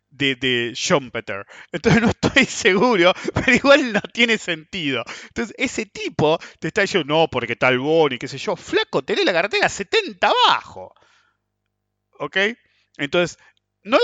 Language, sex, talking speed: English, male, 140 wpm